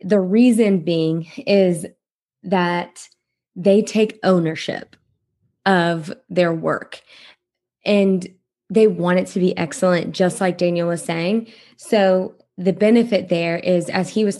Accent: American